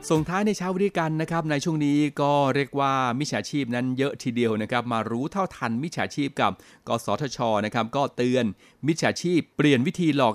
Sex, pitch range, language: male, 115-135 Hz, Thai